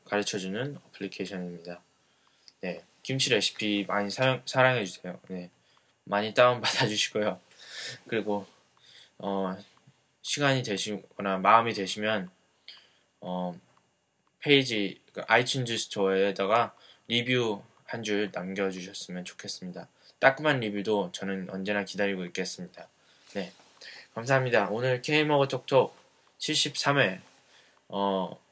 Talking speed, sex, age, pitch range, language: 80 wpm, male, 20-39, 95-125 Hz, English